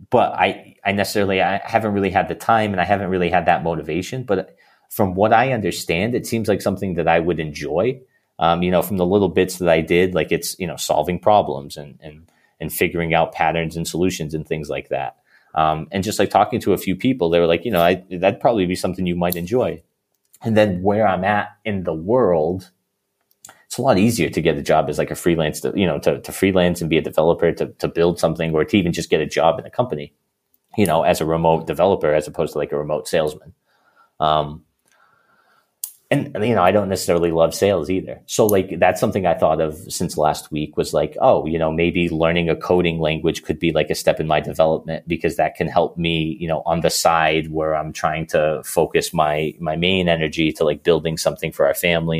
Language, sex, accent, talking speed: English, male, American, 230 wpm